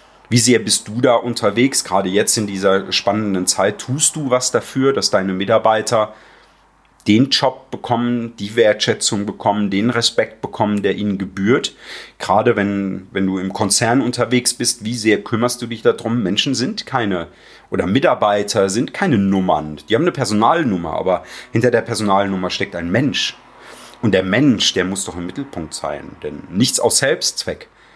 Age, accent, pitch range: 40-59, German, 95-125 Hz